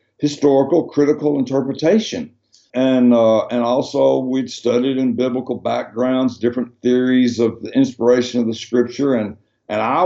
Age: 60-79